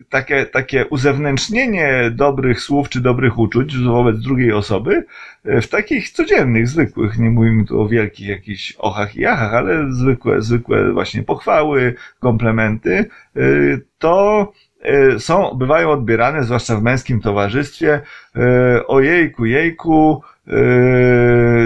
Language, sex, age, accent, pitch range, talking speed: Polish, male, 30-49, native, 115-140 Hz, 115 wpm